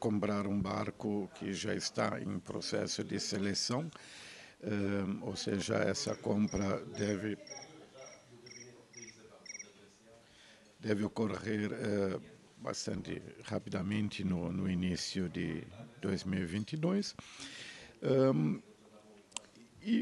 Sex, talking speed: male, 80 wpm